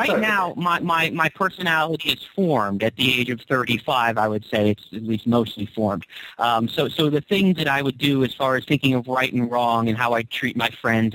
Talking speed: 235 wpm